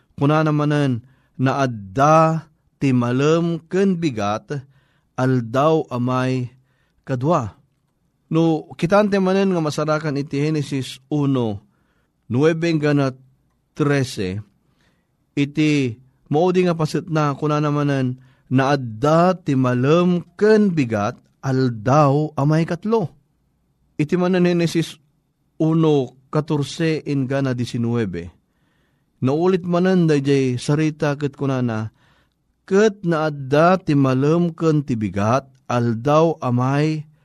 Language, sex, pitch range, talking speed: Filipino, male, 130-160 Hz, 95 wpm